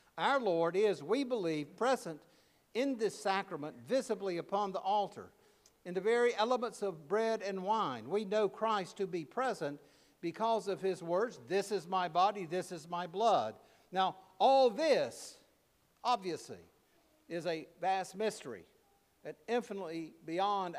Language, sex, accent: English, male, American